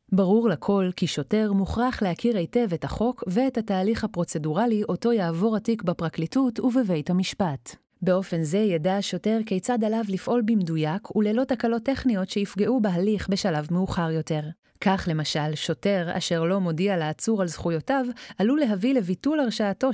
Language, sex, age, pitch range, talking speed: Hebrew, female, 30-49, 175-225 Hz, 140 wpm